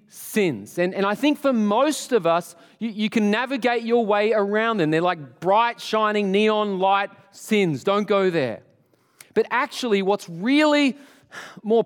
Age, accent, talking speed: 30-49, Australian, 160 wpm